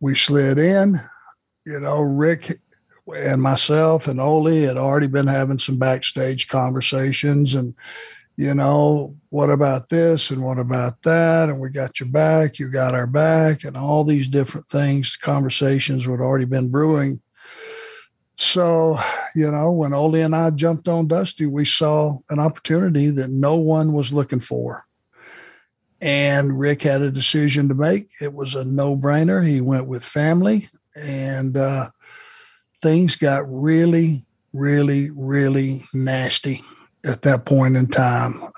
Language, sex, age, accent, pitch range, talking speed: English, male, 60-79, American, 135-155 Hz, 150 wpm